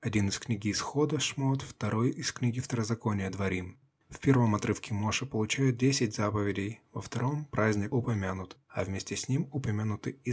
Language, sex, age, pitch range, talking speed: Russian, male, 20-39, 105-125 Hz, 170 wpm